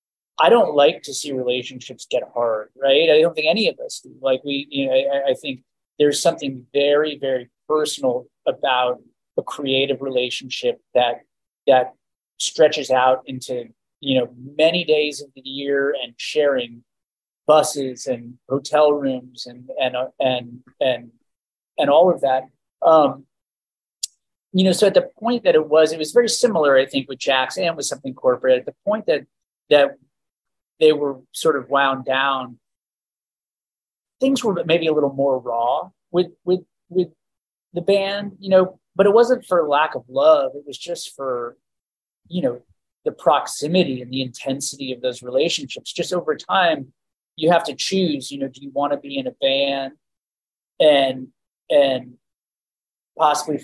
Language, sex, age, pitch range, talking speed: English, male, 30-49, 130-175 Hz, 165 wpm